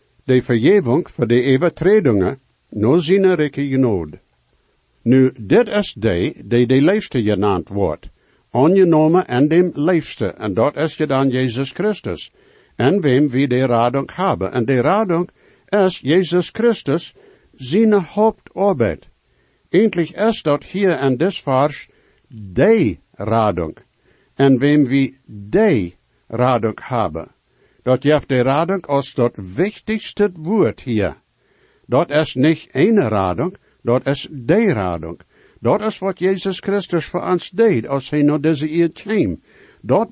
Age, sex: 60-79, male